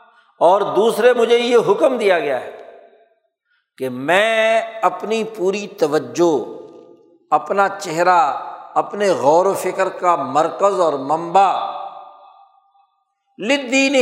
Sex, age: male, 60-79